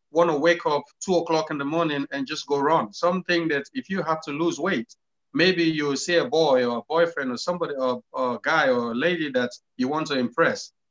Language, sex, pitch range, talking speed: English, male, 140-185 Hz, 230 wpm